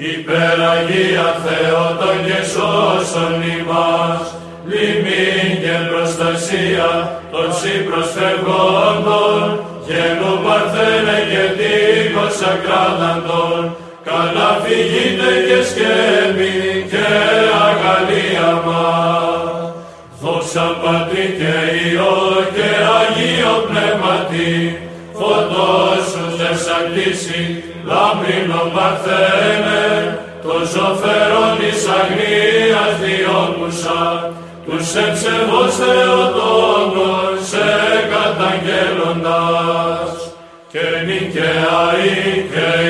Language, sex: Greek, male